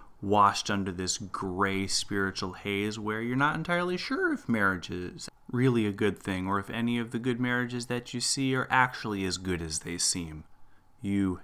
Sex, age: male, 30-49